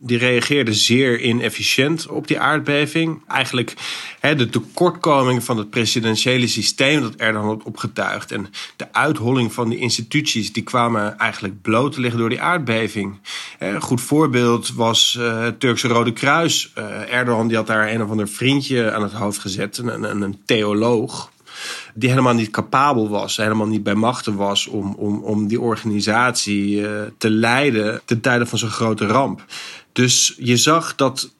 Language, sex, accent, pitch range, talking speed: Dutch, male, Dutch, 110-125 Hz, 155 wpm